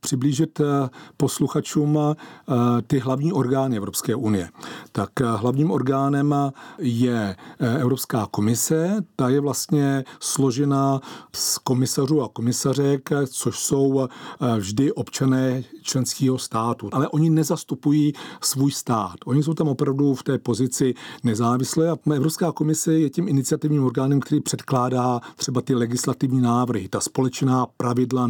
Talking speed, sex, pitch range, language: 120 wpm, male, 120-145 Hz, Czech